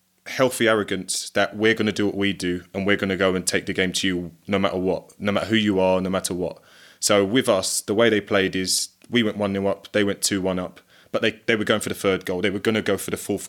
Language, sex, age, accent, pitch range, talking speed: English, male, 20-39, British, 95-105 Hz, 285 wpm